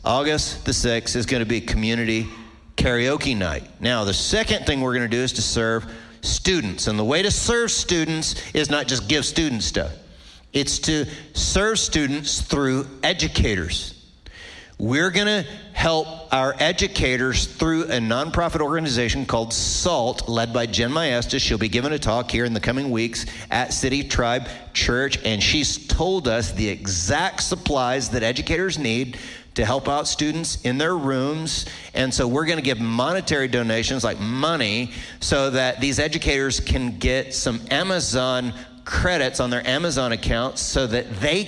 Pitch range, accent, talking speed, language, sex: 115-145 Hz, American, 160 wpm, English, male